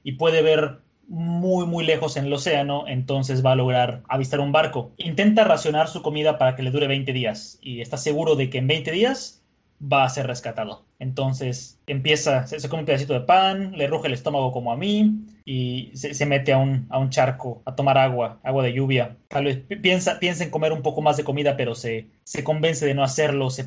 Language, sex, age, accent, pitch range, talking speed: Spanish, male, 20-39, Mexican, 130-155 Hz, 220 wpm